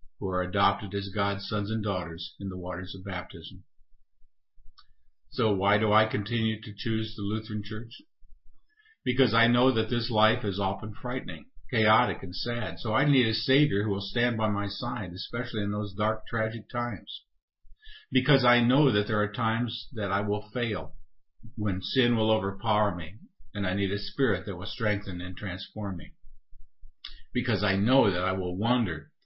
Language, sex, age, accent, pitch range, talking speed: English, male, 50-69, American, 100-115 Hz, 175 wpm